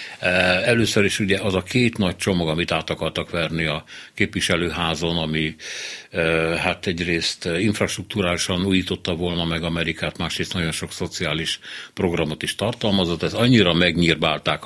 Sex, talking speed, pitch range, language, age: male, 130 wpm, 80-95 Hz, Hungarian, 60-79